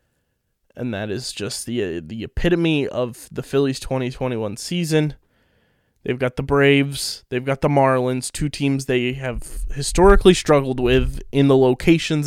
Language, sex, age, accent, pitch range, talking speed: English, male, 20-39, American, 125-145 Hz, 145 wpm